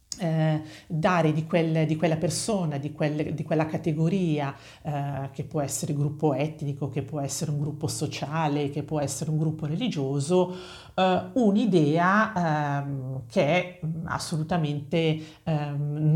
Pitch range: 145-175 Hz